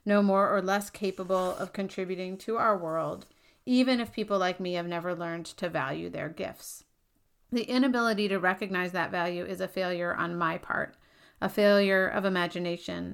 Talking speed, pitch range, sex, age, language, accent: 175 wpm, 175-205 Hz, female, 40-59, English, American